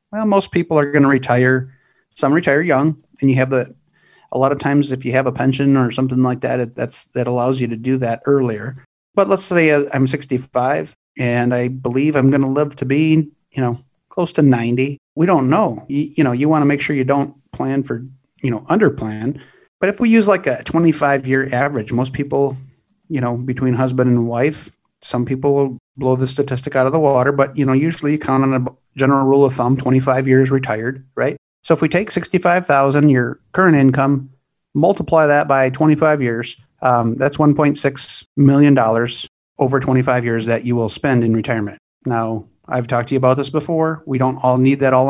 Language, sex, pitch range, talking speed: English, male, 125-145 Hz, 210 wpm